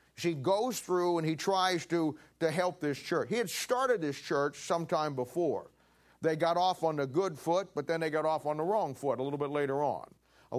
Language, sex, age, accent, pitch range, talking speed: English, male, 40-59, American, 145-180 Hz, 225 wpm